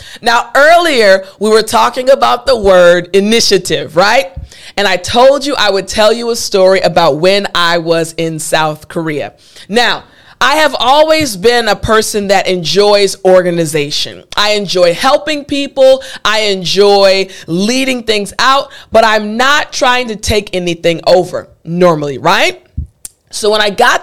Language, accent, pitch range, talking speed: English, American, 185-260 Hz, 150 wpm